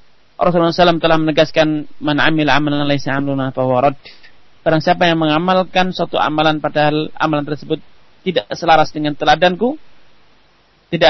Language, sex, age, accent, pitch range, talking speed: Romanian, male, 30-49, Indonesian, 155-190 Hz, 105 wpm